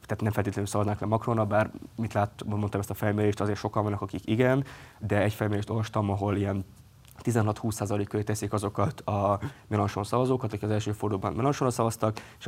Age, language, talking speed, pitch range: 20-39, Hungarian, 180 wpm, 105-115 Hz